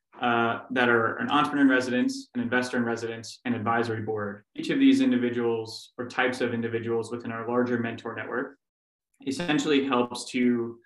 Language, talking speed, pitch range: English, 165 wpm, 115-125 Hz